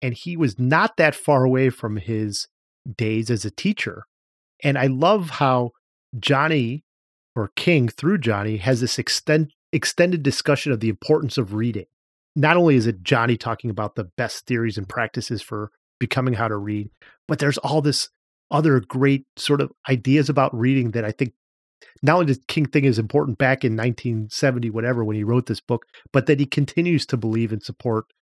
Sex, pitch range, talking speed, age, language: male, 110-140 Hz, 185 wpm, 30-49, English